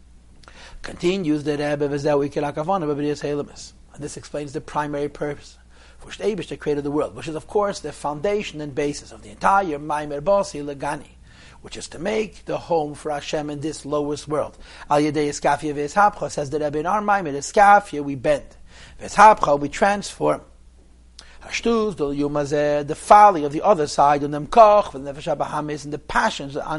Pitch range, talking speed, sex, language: 140-180 Hz, 155 wpm, male, English